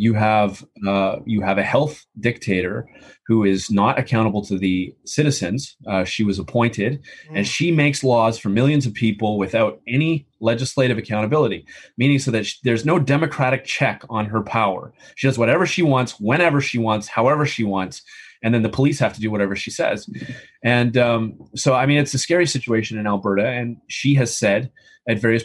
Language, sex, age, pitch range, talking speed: English, male, 30-49, 110-135 Hz, 185 wpm